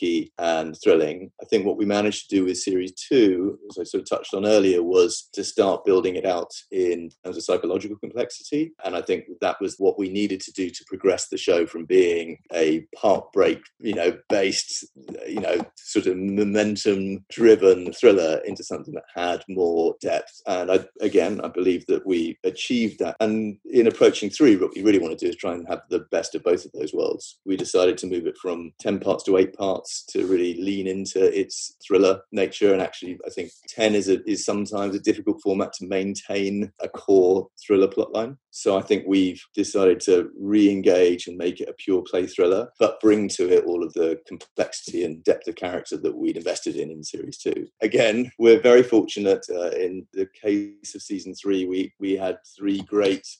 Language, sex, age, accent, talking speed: English, male, 30-49, British, 200 wpm